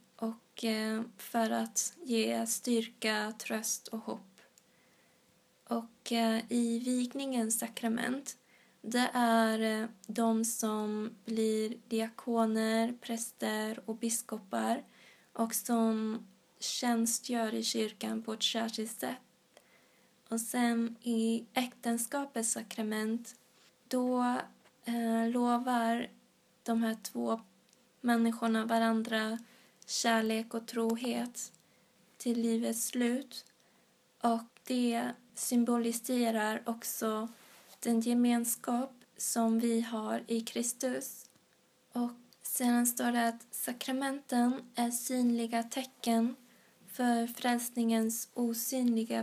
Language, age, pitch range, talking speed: Swedish, 20-39, 225-245 Hz, 90 wpm